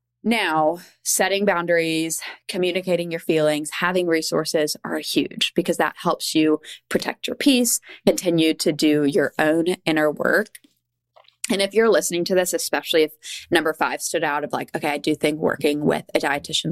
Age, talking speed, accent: 20-39, 165 wpm, American